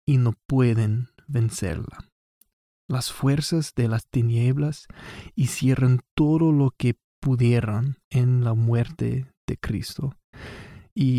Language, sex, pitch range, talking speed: Spanish, male, 115-135 Hz, 105 wpm